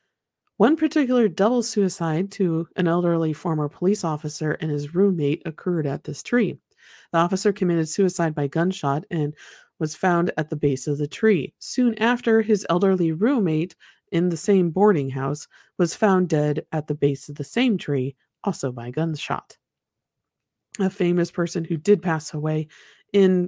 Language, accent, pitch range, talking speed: English, American, 150-200 Hz, 160 wpm